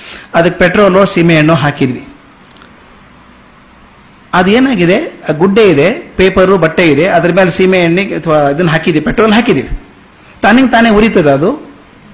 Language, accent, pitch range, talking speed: Kannada, native, 185-235 Hz, 100 wpm